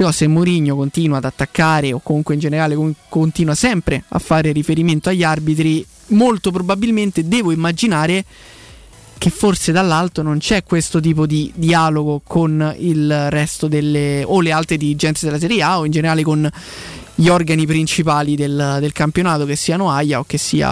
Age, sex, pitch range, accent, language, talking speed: 20-39, male, 155-175 Hz, native, Italian, 165 wpm